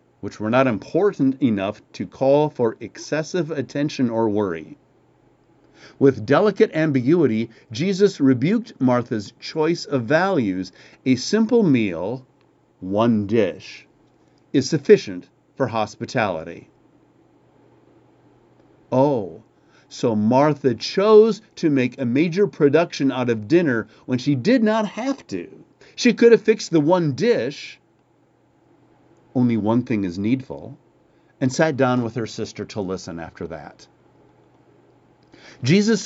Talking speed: 120 wpm